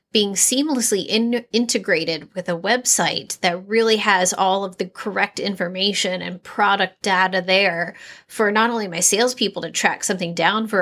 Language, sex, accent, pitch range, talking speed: English, female, American, 185-215 Hz, 155 wpm